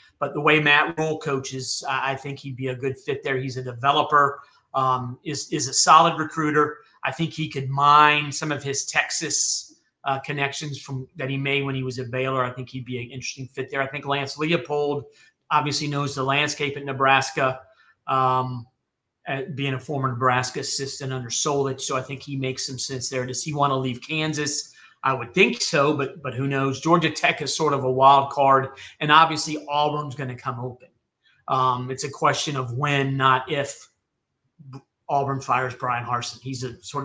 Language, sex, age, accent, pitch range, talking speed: English, male, 40-59, American, 130-150 Hz, 200 wpm